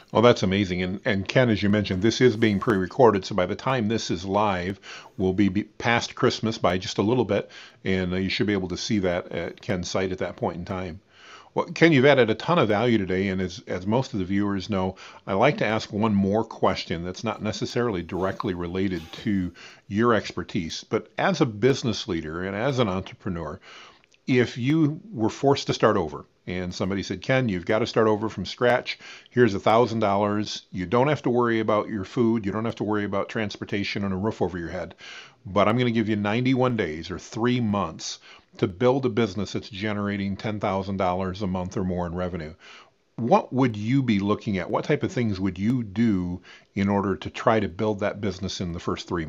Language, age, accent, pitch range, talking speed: English, 40-59, American, 95-120 Hz, 215 wpm